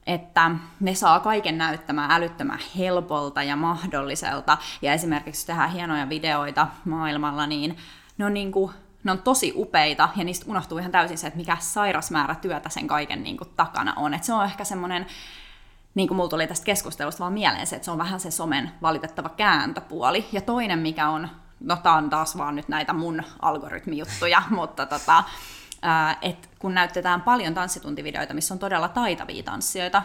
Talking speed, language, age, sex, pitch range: 170 wpm, Finnish, 20-39, female, 155-190 Hz